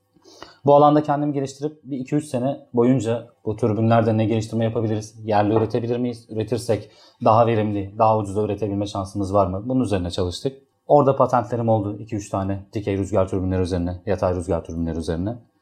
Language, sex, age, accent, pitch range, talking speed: Turkish, male, 30-49, native, 100-125 Hz, 160 wpm